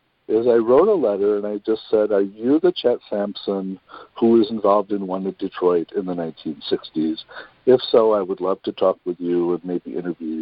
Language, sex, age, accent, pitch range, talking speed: English, male, 60-79, American, 105-140 Hz, 205 wpm